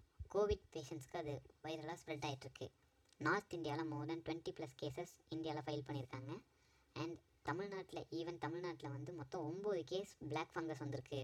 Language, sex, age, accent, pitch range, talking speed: Tamil, male, 20-39, native, 145-175 Hz, 145 wpm